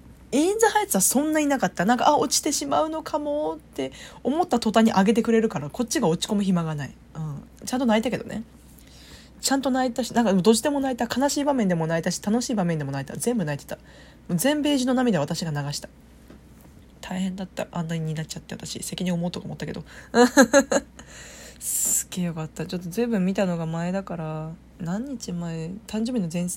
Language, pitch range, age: Japanese, 170-225 Hz, 20-39